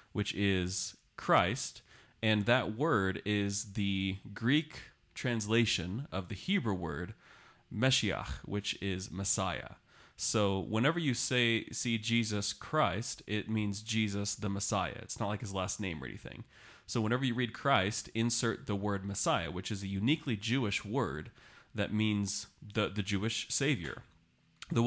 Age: 30-49